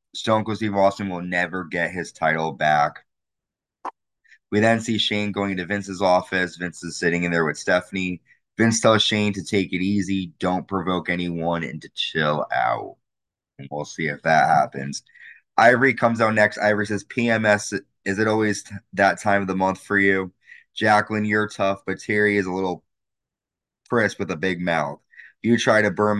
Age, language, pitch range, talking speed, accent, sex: 20-39, English, 85-105 Hz, 180 wpm, American, male